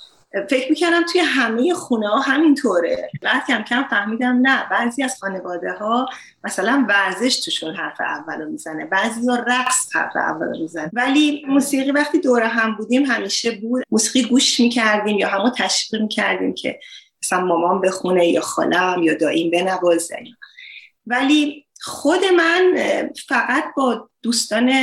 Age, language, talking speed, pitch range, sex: 30-49, Persian, 145 wpm, 210-275 Hz, female